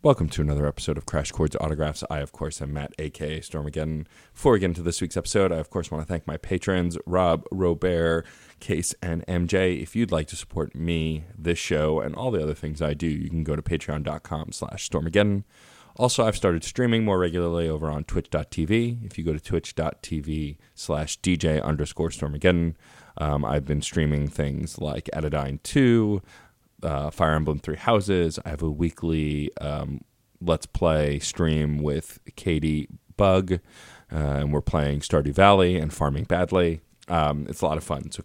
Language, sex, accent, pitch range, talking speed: English, male, American, 75-90 Hz, 180 wpm